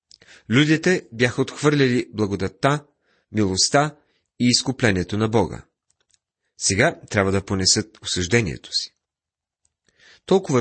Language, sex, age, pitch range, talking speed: Bulgarian, male, 30-49, 100-145 Hz, 90 wpm